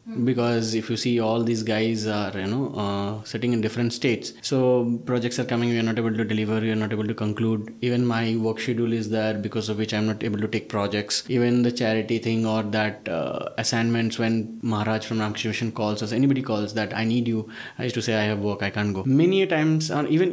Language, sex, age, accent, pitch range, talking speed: English, male, 20-39, Indian, 110-150 Hz, 240 wpm